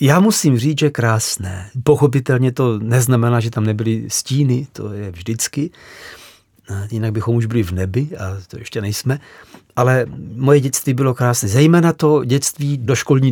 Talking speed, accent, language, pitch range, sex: 160 wpm, native, Czech, 110-135 Hz, male